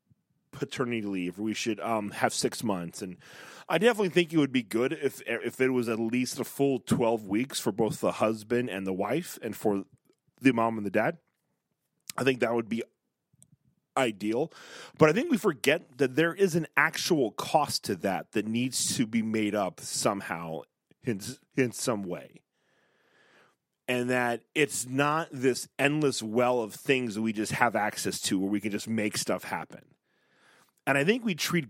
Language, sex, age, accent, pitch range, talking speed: English, male, 30-49, American, 115-160 Hz, 185 wpm